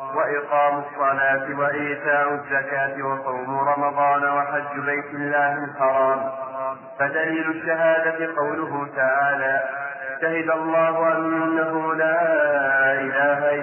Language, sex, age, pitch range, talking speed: Arabic, male, 40-59, 135-160 Hz, 85 wpm